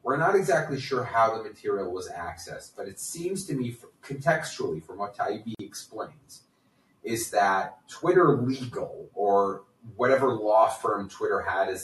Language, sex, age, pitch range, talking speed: English, male, 30-49, 120-195 Hz, 155 wpm